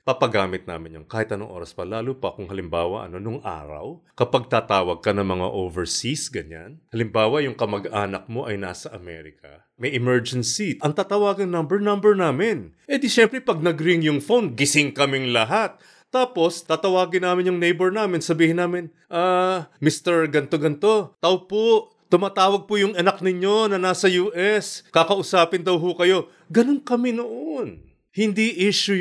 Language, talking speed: English, 155 wpm